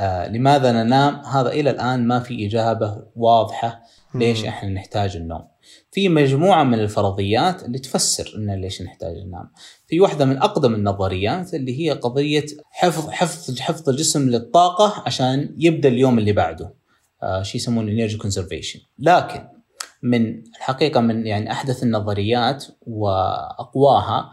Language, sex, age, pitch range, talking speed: Arabic, male, 30-49, 100-140 Hz, 135 wpm